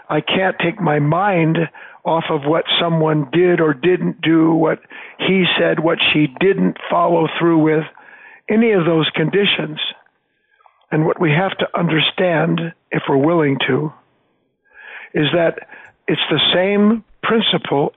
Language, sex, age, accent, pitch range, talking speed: English, male, 60-79, American, 160-205 Hz, 140 wpm